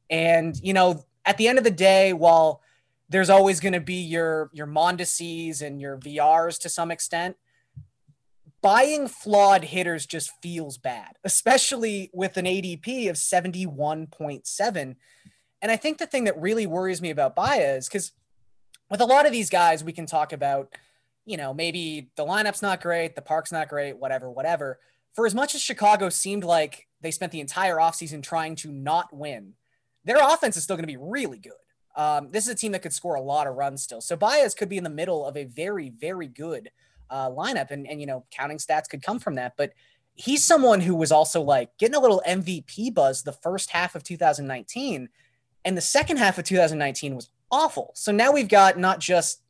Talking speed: 200 wpm